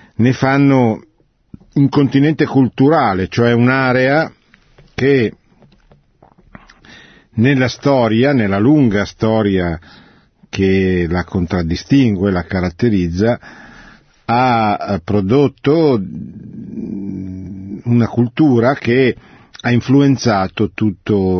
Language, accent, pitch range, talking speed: Italian, native, 95-120 Hz, 75 wpm